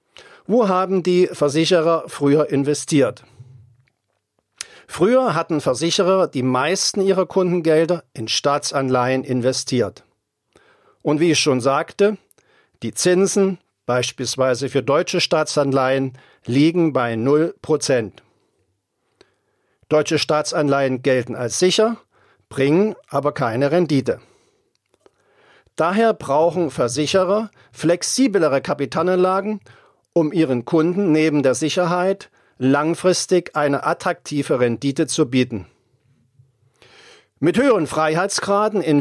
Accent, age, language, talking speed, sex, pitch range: German, 50-69, German, 90 wpm, male, 135-185 Hz